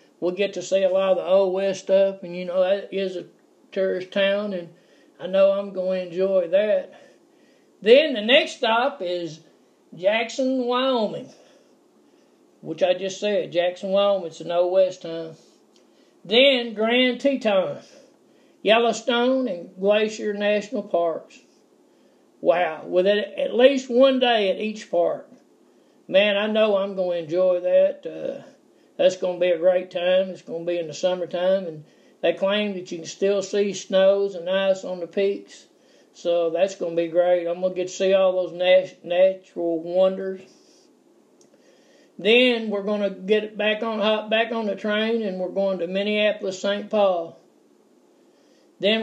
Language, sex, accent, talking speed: English, male, American, 165 wpm